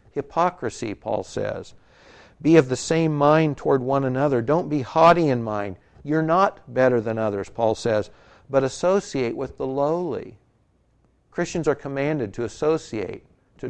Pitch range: 125-160 Hz